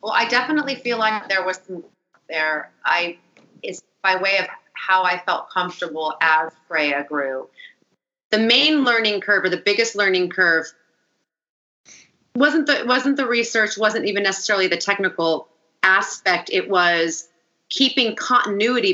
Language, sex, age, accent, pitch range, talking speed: English, female, 30-49, American, 170-210 Hz, 145 wpm